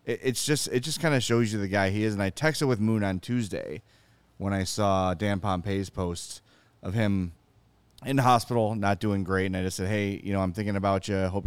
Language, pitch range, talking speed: English, 100-120 Hz, 240 wpm